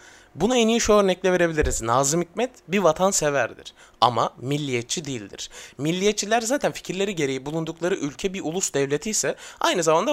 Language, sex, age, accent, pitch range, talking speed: Turkish, male, 30-49, native, 145-205 Hz, 150 wpm